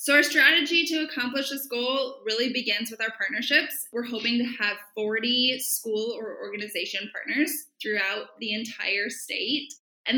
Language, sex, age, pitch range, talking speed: English, female, 10-29, 205-270 Hz, 155 wpm